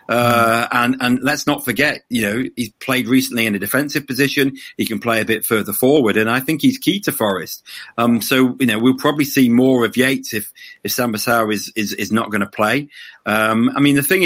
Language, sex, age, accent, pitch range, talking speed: English, male, 40-59, British, 105-130 Hz, 230 wpm